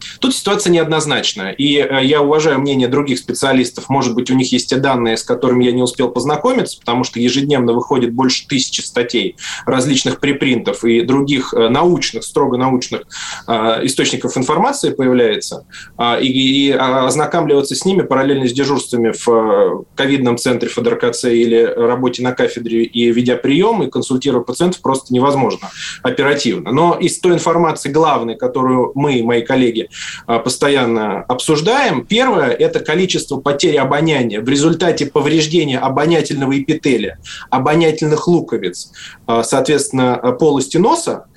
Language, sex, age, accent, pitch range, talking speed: Russian, male, 20-39, native, 125-155 Hz, 130 wpm